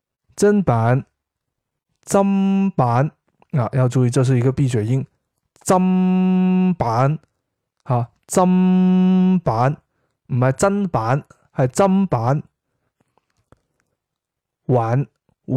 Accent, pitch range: native, 125-165 Hz